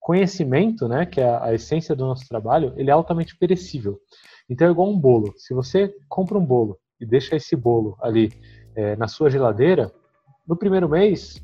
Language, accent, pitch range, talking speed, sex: Portuguese, Brazilian, 125-175 Hz, 185 wpm, male